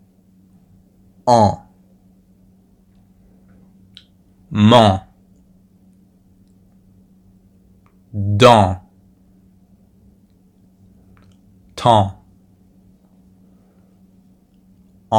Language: French